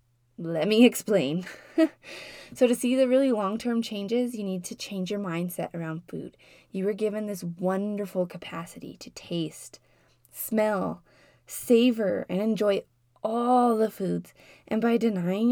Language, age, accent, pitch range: English, 20-39, American, 175-225 Hz